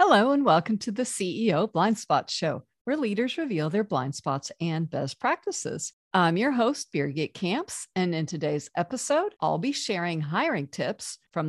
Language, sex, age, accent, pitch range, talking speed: English, female, 50-69, American, 160-245 Hz, 165 wpm